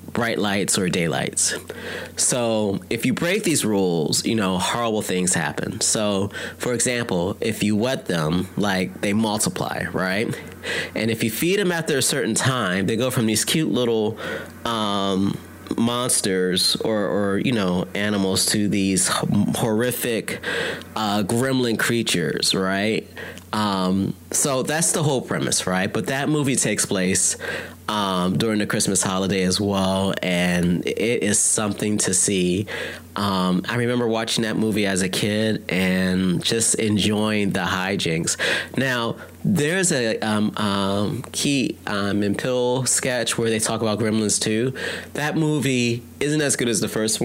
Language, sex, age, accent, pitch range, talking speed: English, male, 30-49, American, 95-115 Hz, 150 wpm